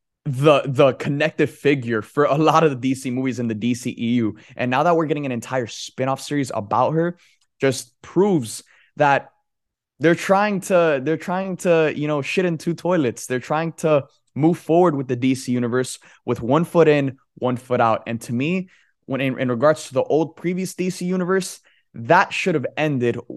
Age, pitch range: 20-39, 125-165 Hz